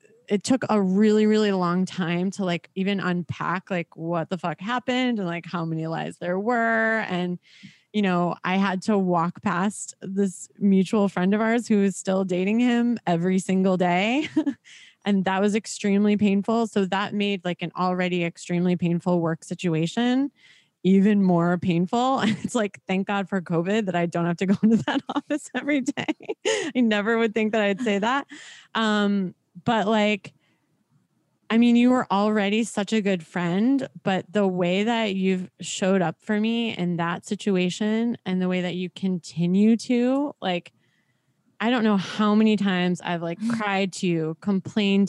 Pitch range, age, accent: 180-225 Hz, 20-39, American